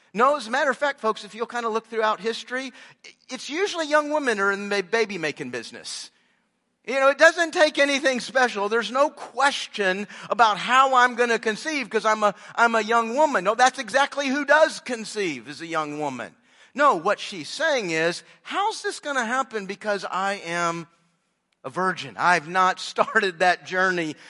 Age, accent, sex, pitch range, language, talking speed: 50-69, American, male, 180-255 Hz, English, 185 wpm